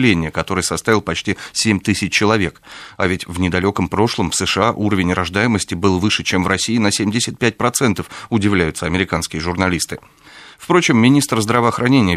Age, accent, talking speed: 30-49, native, 140 wpm